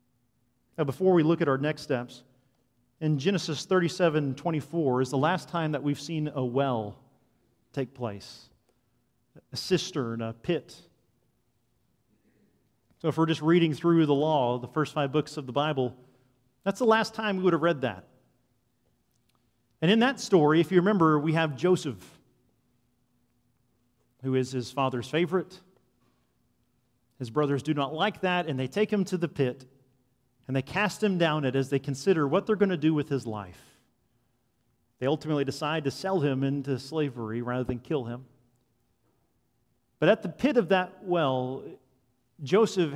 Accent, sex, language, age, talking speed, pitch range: American, male, English, 40-59, 160 wpm, 120-160 Hz